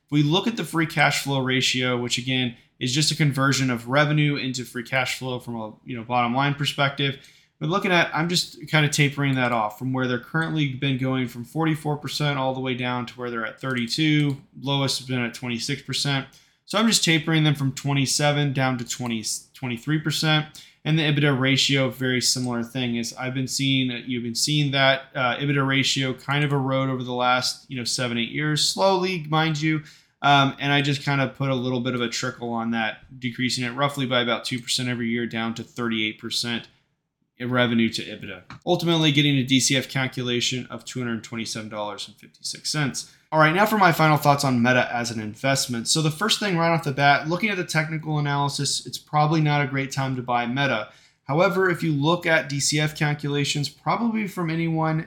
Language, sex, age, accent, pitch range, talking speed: English, male, 20-39, American, 125-155 Hz, 205 wpm